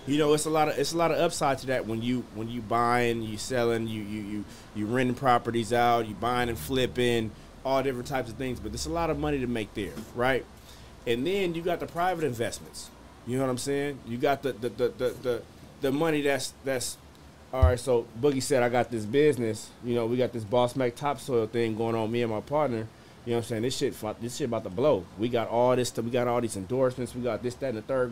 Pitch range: 110-135 Hz